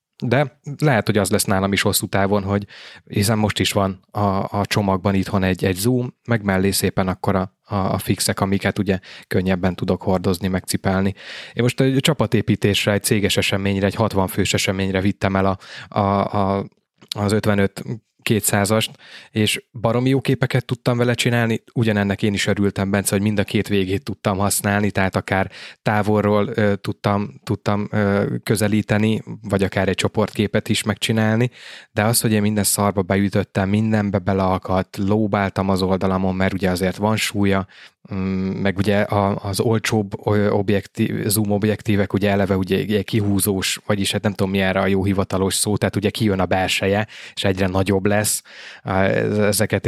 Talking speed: 160 wpm